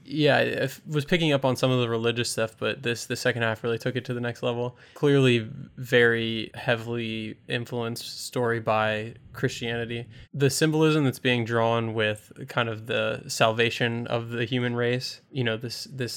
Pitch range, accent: 115-125 Hz, American